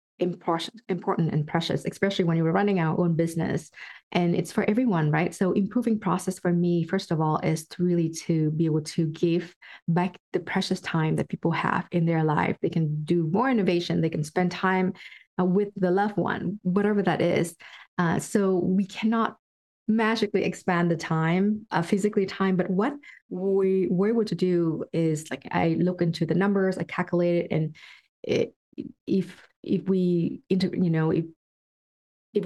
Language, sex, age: English, female, 30-49